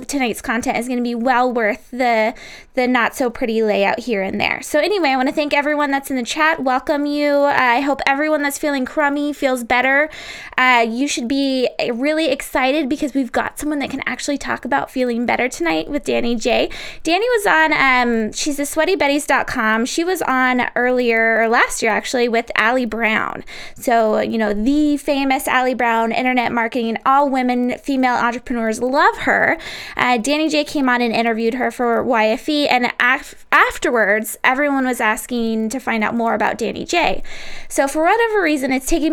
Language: English